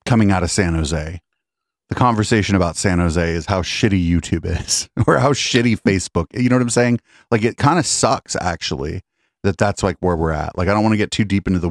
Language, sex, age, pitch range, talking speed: English, male, 30-49, 85-110 Hz, 235 wpm